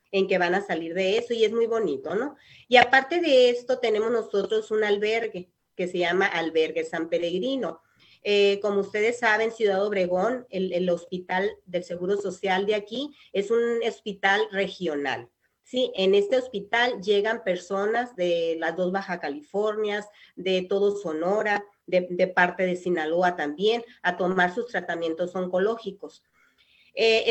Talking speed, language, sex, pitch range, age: 155 wpm, Spanish, female, 180-225 Hz, 40-59